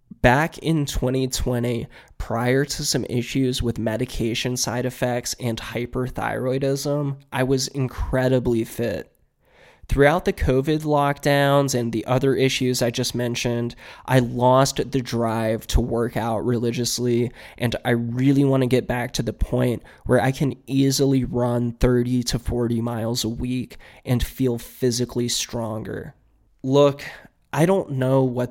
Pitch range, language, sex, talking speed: 120-135 Hz, English, male, 135 wpm